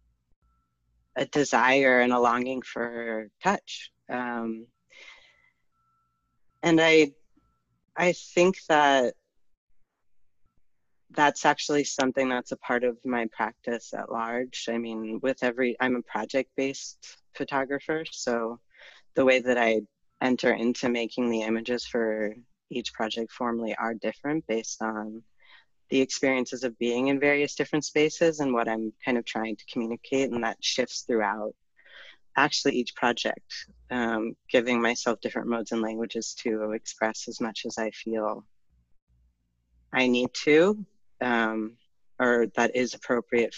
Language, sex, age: English, female, 30-49